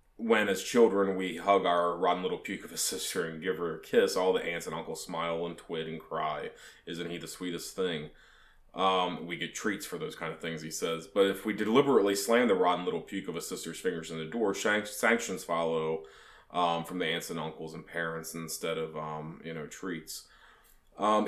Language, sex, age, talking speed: English, male, 20-39, 215 wpm